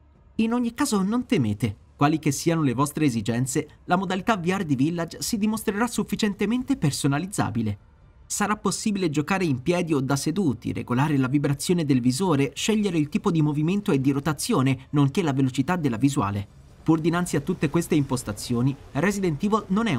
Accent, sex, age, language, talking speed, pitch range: native, male, 30-49, Italian, 170 wpm, 130-180 Hz